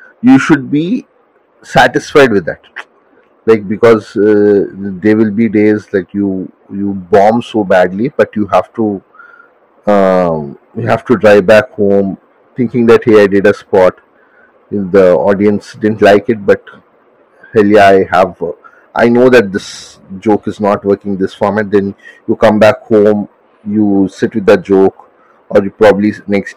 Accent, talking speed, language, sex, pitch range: Indian, 165 wpm, English, male, 100-125 Hz